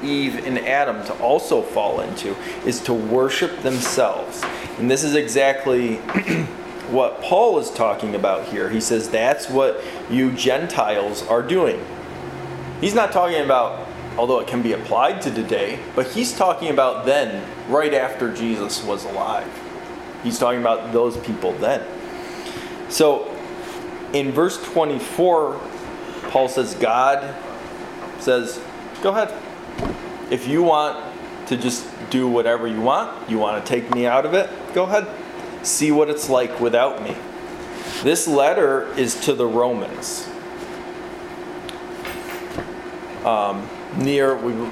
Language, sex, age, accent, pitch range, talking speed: English, male, 20-39, American, 120-185 Hz, 130 wpm